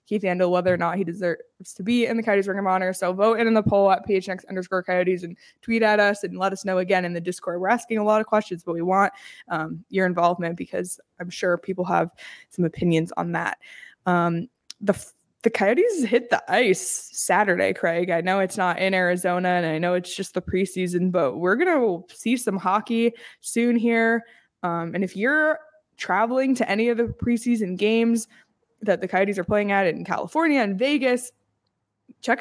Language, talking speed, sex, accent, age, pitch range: English, 205 wpm, female, American, 20-39, 185-230 Hz